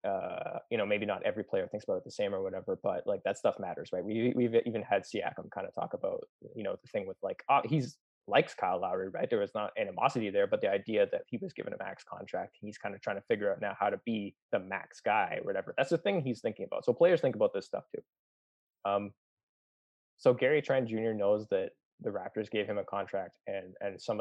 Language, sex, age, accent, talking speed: English, male, 20-39, American, 245 wpm